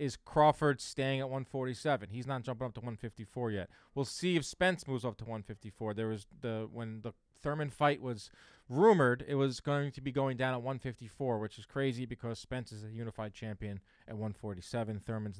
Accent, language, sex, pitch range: American, English, male, 115-145 Hz